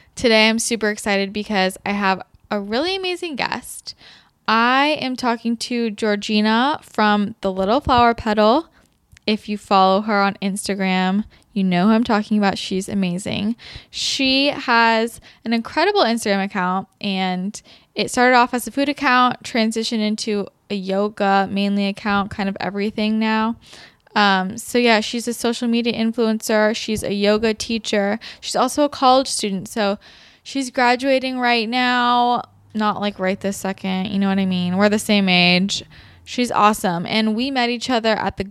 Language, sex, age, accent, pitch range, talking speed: English, female, 10-29, American, 195-235 Hz, 160 wpm